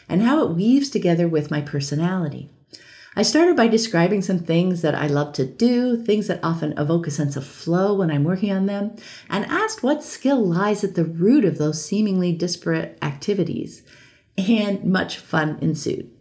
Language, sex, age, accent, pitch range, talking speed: English, female, 50-69, American, 155-210 Hz, 180 wpm